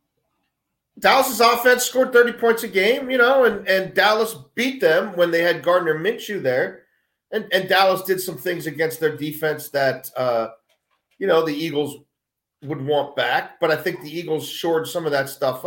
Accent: American